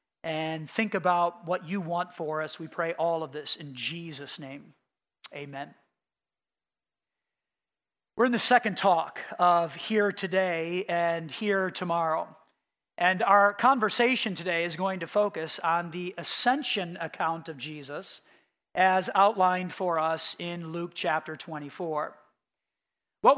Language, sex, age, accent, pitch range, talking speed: English, male, 40-59, American, 170-225 Hz, 130 wpm